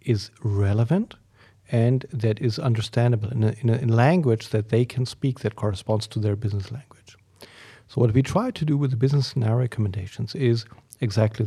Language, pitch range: English, 110-140 Hz